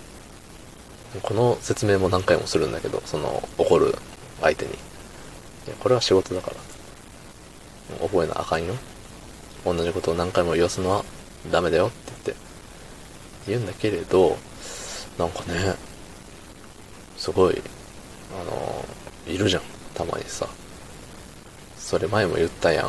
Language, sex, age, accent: Japanese, male, 20-39, native